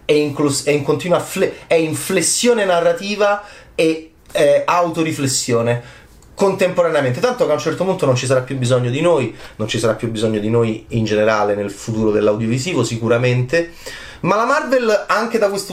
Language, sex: Italian, male